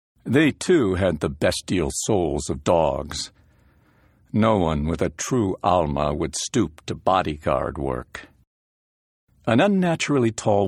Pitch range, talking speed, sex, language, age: 75-105 Hz, 125 wpm, male, English, 60-79